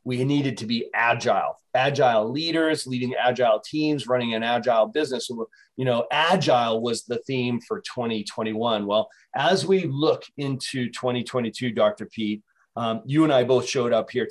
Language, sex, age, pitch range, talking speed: English, male, 40-59, 115-135 Hz, 160 wpm